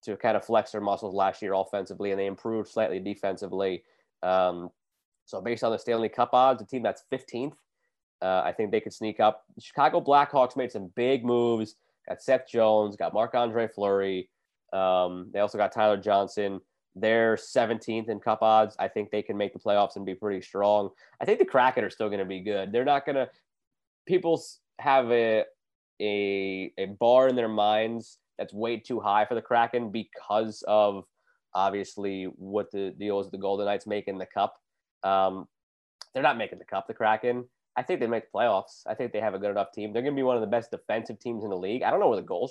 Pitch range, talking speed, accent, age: 100-120 Hz, 215 wpm, American, 20-39